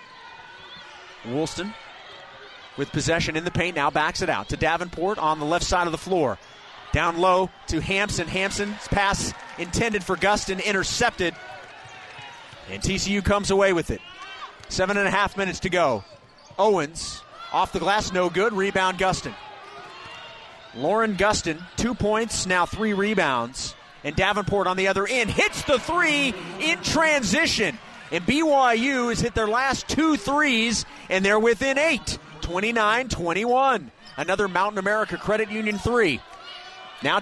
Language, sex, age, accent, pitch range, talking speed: English, male, 30-49, American, 185-225 Hz, 140 wpm